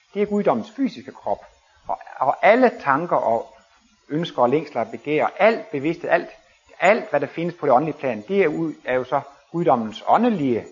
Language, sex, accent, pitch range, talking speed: Danish, male, native, 125-190 Hz, 185 wpm